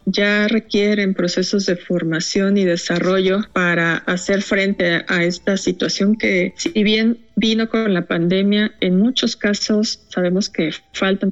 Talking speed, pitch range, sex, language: 140 wpm, 180-220 Hz, female, Spanish